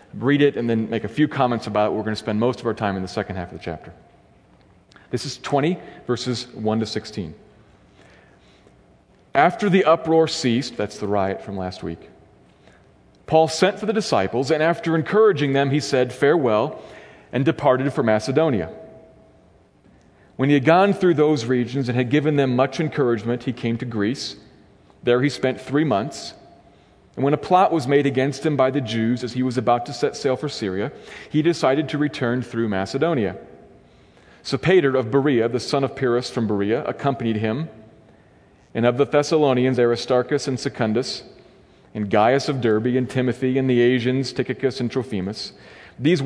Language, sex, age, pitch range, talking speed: English, male, 40-59, 110-145 Hz, 180 wpm